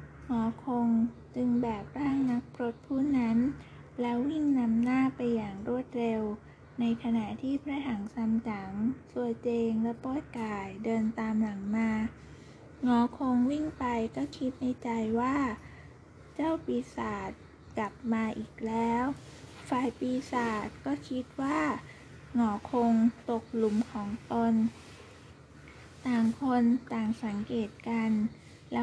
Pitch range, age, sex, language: 225-255 Hz, 20-39, female, Thai